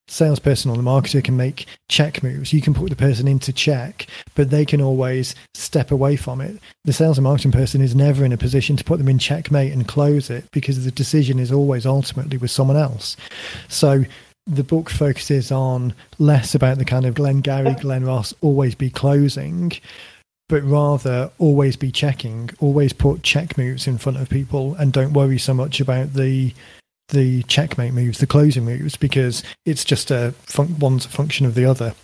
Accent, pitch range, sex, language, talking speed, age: British, 130-145 Hz, male, English, 195 wpm, 30-49